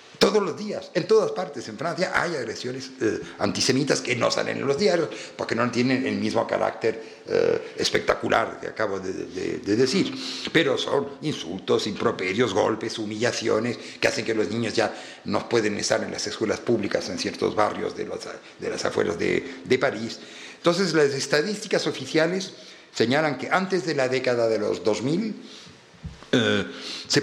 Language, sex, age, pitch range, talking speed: Spanish, male, 50-69, 125-195 Hz, 170 wpm